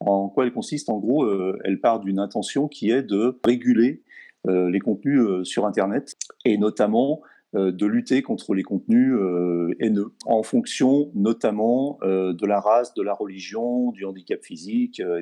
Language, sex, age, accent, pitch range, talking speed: French, male, 40-59, French, 95-125 Hz, 180 wpm